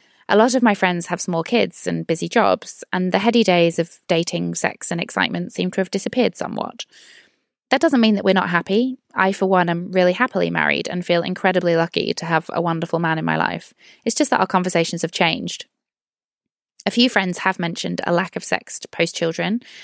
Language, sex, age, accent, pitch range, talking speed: English, female, 20-39, British, 170-225 Hz, 210 wpm